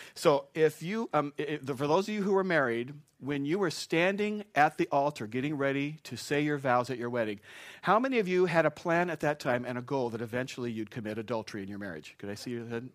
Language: English